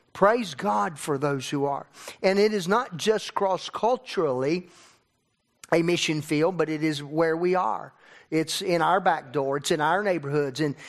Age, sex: 50-69, male